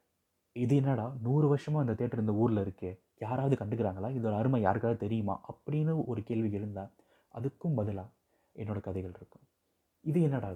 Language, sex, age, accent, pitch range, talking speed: Tamil, male, 30-49, native, 100-130 Hz, 150 wpm